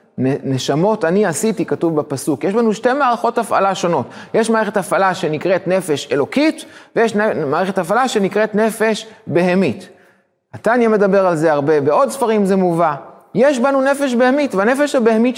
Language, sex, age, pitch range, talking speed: Hebrew, male, 30-49, 175-240 Hz, 150 wpm